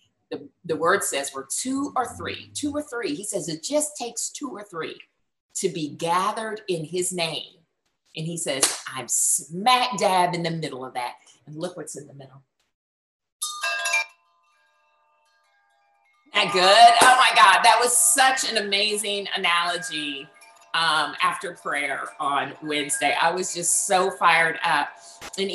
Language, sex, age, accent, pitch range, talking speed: English, female, 50-69, American, 140-200 Hz, 155 wpm